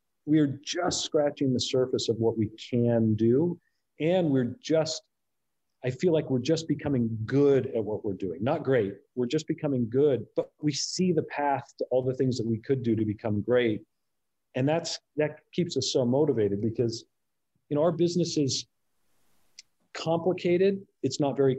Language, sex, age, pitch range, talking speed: English, male, 40-59, 115-150 Hz, 175 wpm